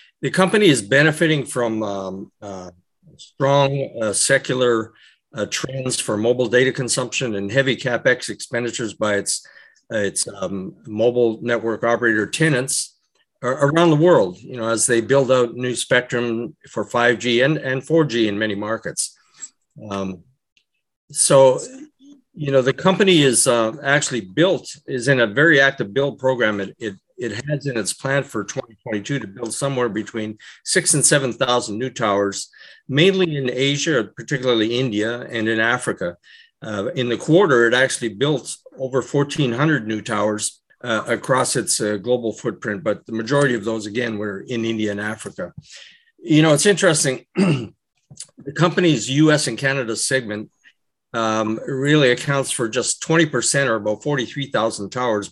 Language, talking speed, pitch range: English, 155 wpm, 110-145 Hz